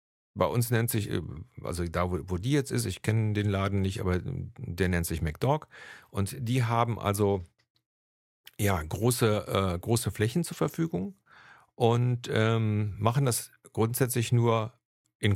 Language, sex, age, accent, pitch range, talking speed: German, male, 50-69, German, 95-120 Hz, 150 wpm